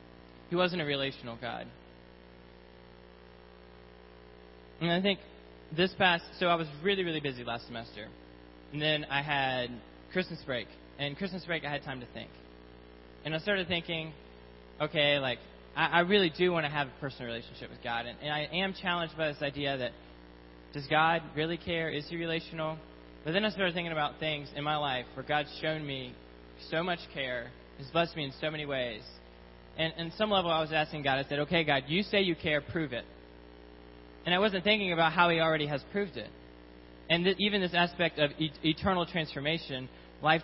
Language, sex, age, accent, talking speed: English, male, 20-39, American, 190 wpm